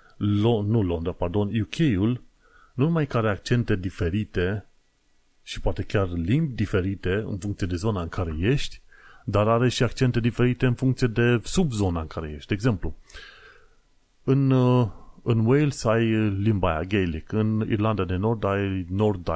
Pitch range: 90-115 Hz